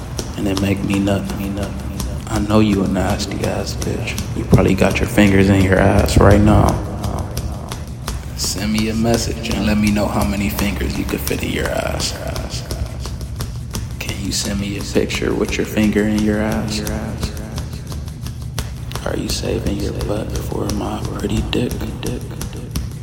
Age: 20-39